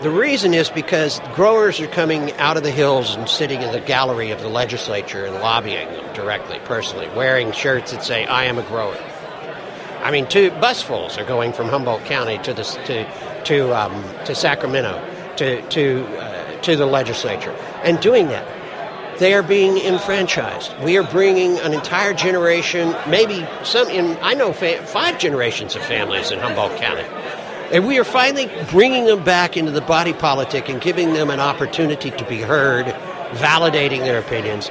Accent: American